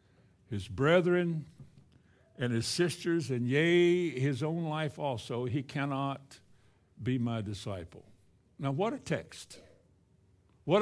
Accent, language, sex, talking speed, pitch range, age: American, English, male, 115 wpm, 125-180 Hz, 60-79